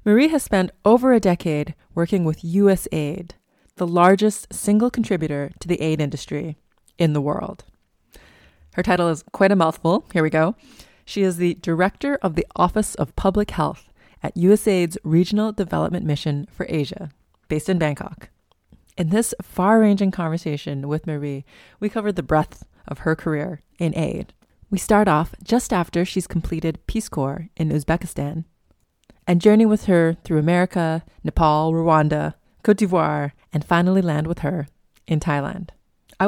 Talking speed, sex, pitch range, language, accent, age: 155 wpm, female, 150-190 Hz, English, American, 20-39